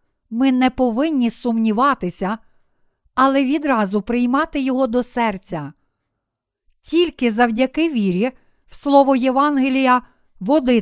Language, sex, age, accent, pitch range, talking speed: Ukrainian, female, 50-69, native, 225-285 Hz, 95 wpm